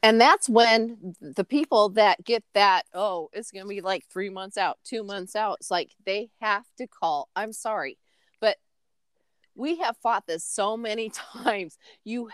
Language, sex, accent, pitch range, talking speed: English, female, American, 185-240 Hz, 180 wpm